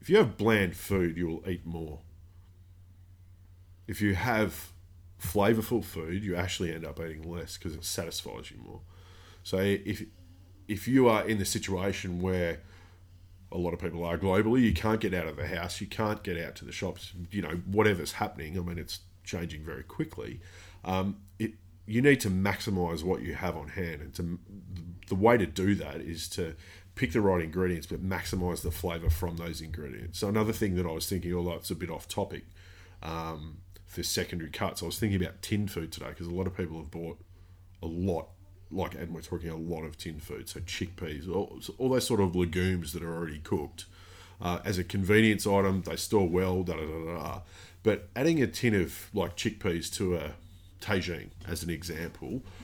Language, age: English, 30-49